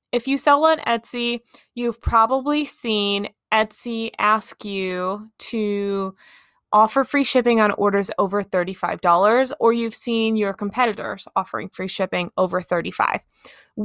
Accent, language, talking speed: American, English, 125 wpm